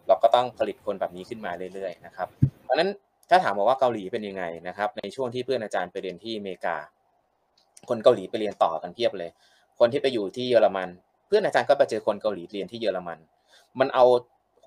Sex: male